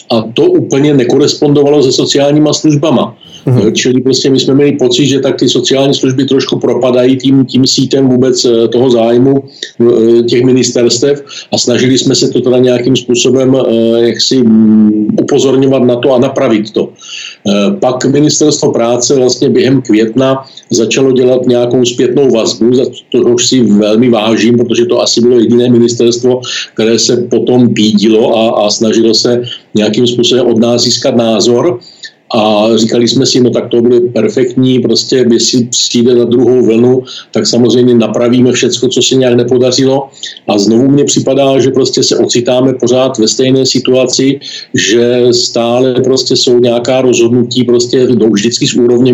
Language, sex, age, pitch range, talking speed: Czech, male, 50-69, 120-130 Hz, 155 wpm